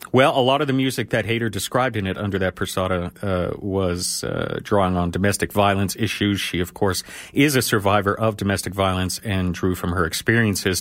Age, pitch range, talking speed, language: 40-59, 95-115 Hz, 195 wpm, English